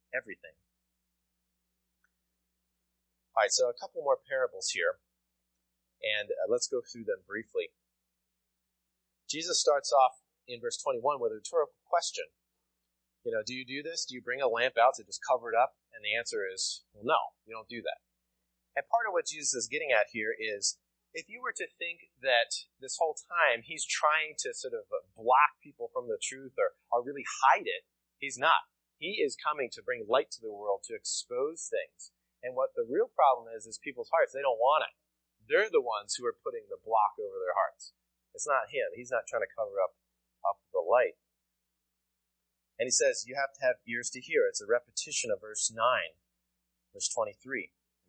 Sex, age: male, 30-49